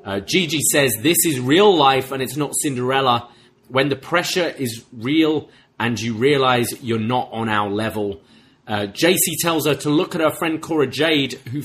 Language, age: English, 30-49